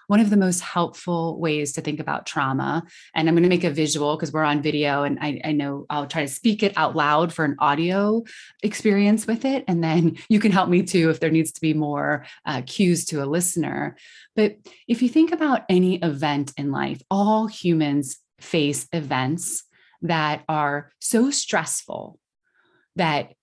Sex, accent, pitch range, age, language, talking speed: female, American, 150-185 Hz, 20-39, English, 185 wpm